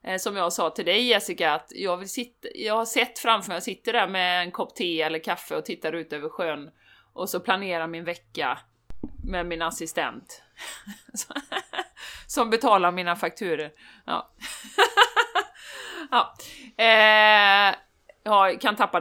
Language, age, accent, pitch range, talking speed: Swedish, 30-49, native, 170-260 Hz, 150 wpm